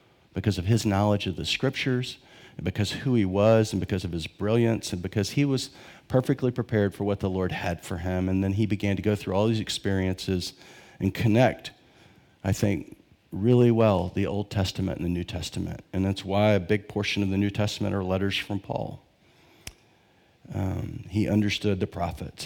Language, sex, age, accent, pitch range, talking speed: English, male, 40-59, American, 95-110 Hz, 195 wpm